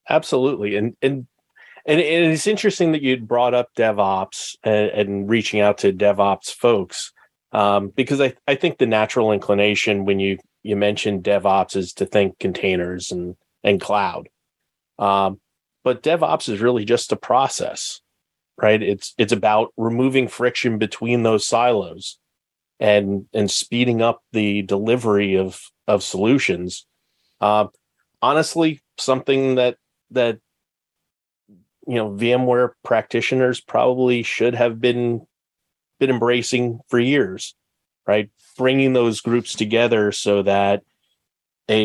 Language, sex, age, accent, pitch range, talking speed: English, male, 40-59, American, 100-125 Hz, 130 wpm